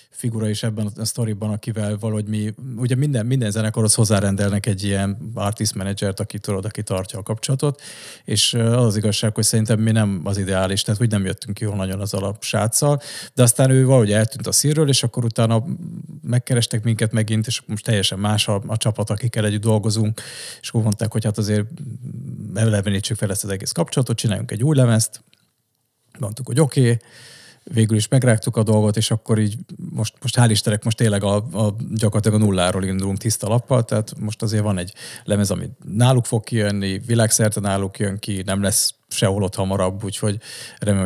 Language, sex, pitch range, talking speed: Hungarian, male, 105-120 Hz, 185 wpm